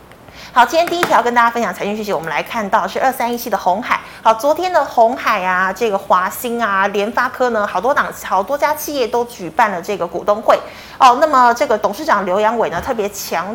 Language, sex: Chinese, female